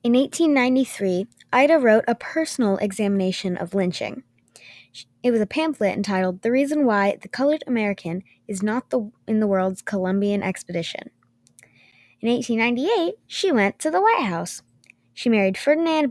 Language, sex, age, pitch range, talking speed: English, female, 20-39, 190-260 Hz, 150 wpm